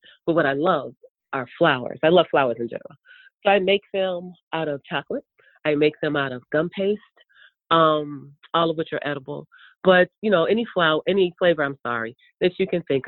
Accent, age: American, 30-49